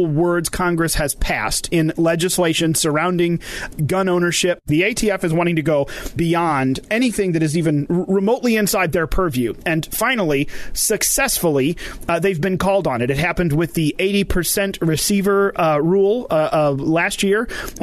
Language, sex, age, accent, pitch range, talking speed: English, male, 30-49, American, 155-195 Hz, 155 wpm